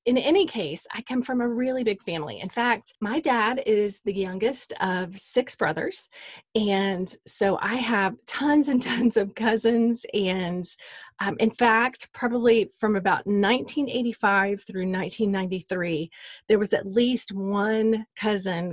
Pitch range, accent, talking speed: 185-230 Hz, American, 145 wpm